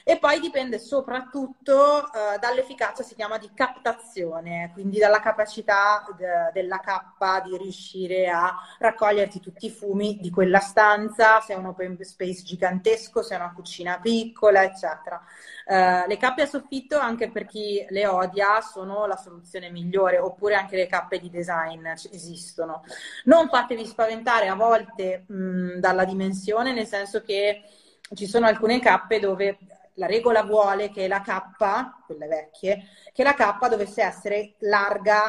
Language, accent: Italian, native